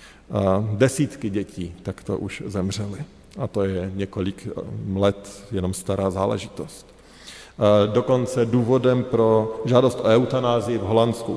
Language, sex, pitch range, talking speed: Slovak, male, 105-125 Hz, 115 wpm